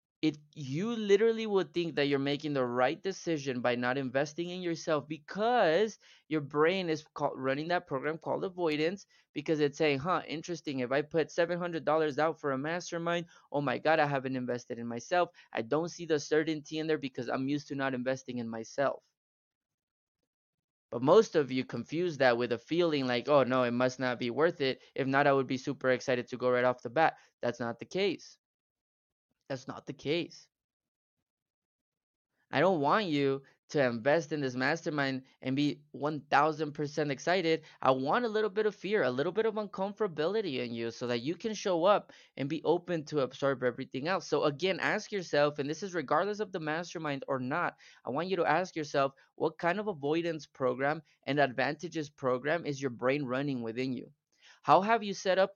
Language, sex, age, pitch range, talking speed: English, male, 20-39, 130-170 Hz, 190 wpm